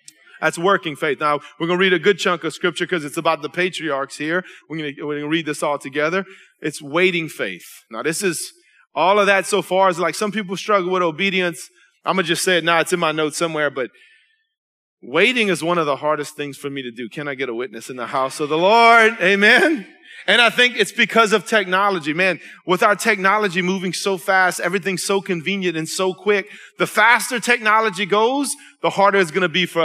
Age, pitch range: 30-49, 170-205 Hz